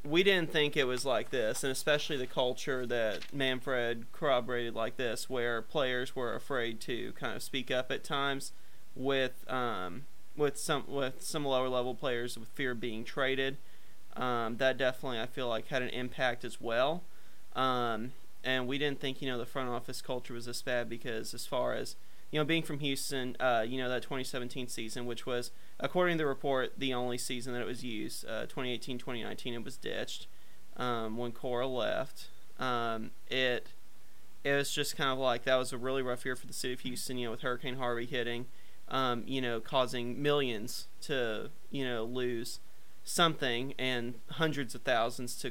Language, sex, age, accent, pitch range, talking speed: English, male, 30-49, American, 120-135 Hz, 190 wpm